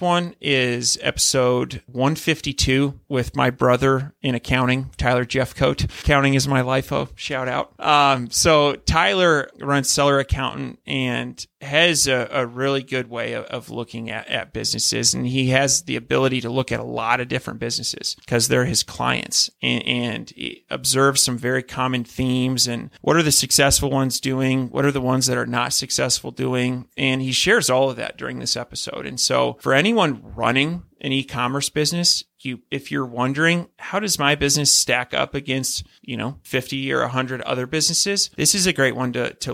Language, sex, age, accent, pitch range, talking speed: English, male, 30-49, American, 125-140 Hz, 180 wpm